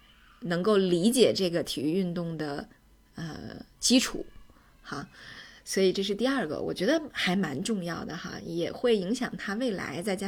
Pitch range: 180-230 Hz